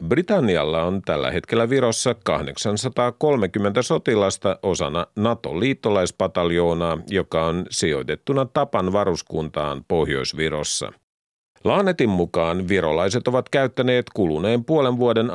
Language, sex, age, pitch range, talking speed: Finnish, male, 50-69, 90-125 Hz, 90 wpm